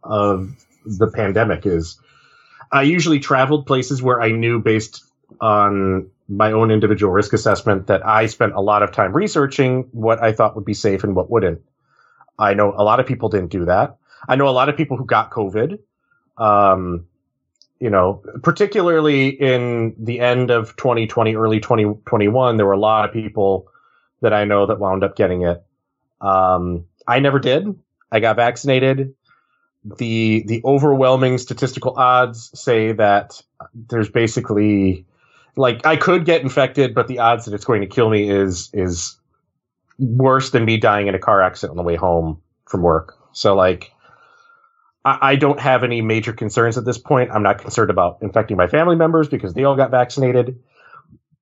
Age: 30-49